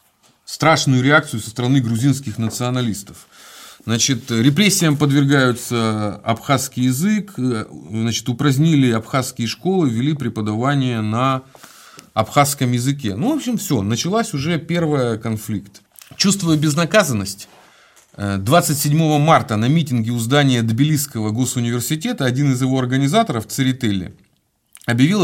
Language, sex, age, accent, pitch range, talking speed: Russian, male, 30-49, native, 125-170 Hz, 100 wpm